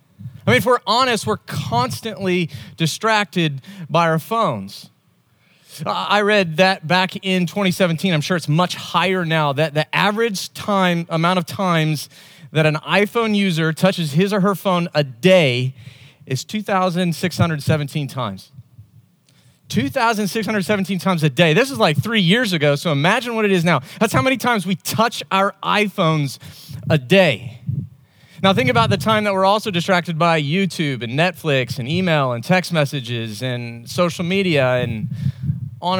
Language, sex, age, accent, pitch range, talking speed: English, male, 30-49, American, 150-205 Hz, 155 wpm